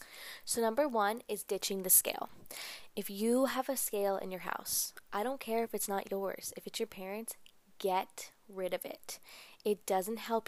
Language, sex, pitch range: English, female, 185-215 Hz